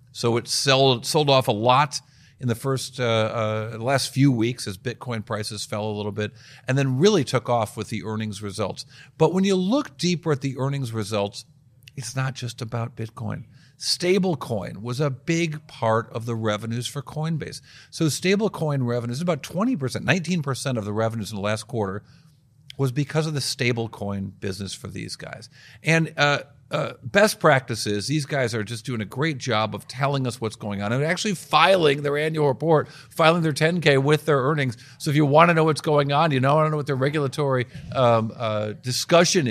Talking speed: 195 wpm